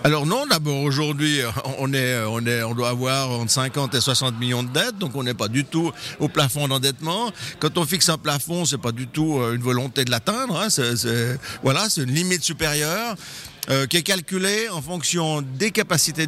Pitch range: 130-170 Hz